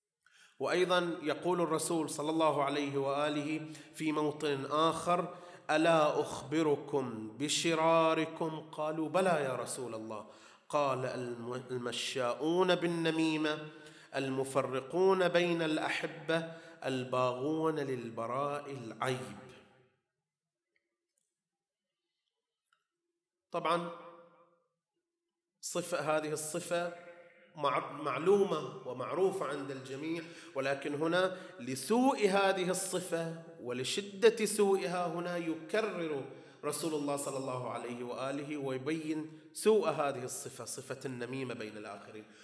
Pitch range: 140-180 Hz